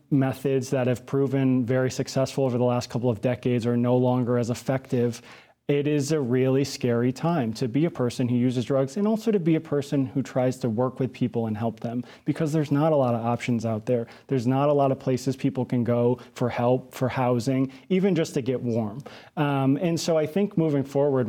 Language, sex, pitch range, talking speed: English, male, 120-140 Hz, 225 wpm